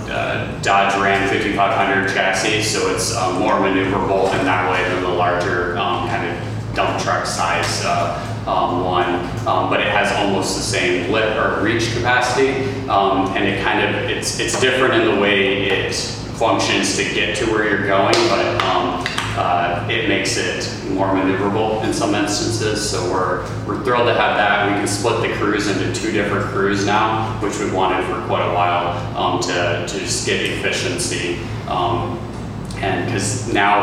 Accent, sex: American, male